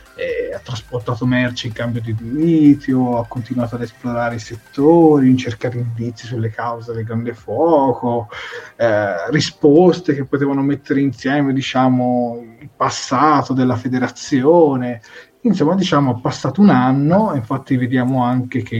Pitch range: 120-150 Hz